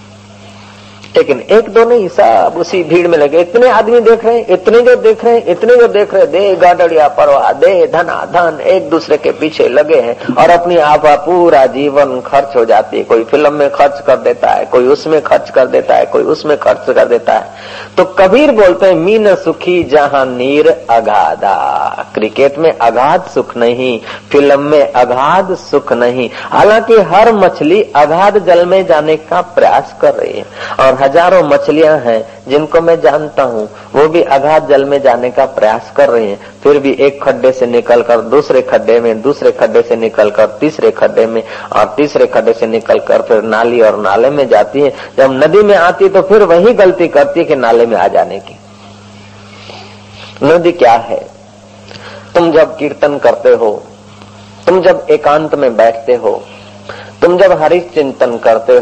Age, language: 50-69, Hindi